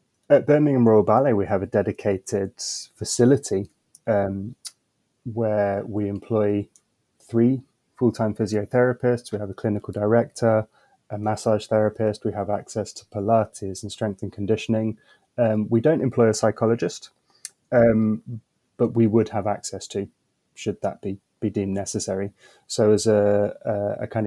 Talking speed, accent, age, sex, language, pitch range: 145 wpm, British, 20-39, male, English, 105-120 Hz